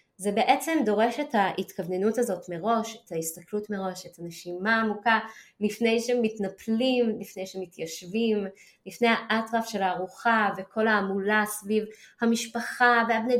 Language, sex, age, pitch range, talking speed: Hebrew, female, 20-39, 190-240 Hz, 115 wpm